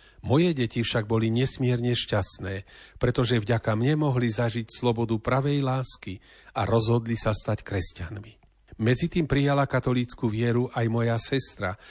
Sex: male